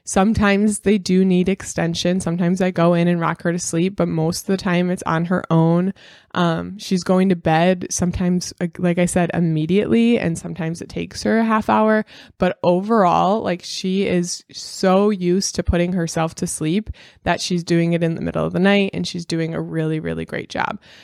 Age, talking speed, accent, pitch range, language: 20-39, 205 wpm, American, 170-200 Hz, English